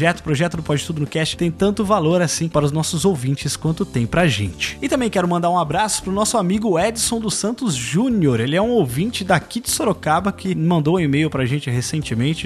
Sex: male